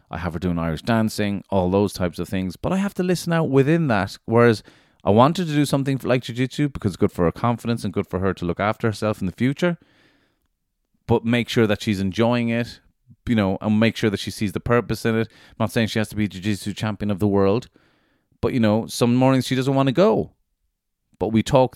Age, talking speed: 30-49, 245 wpm